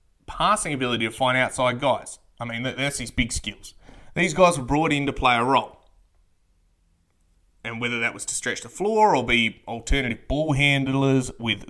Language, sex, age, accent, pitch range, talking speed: English, male, 20-39, Australian, 115-145 Hz, 180 wpm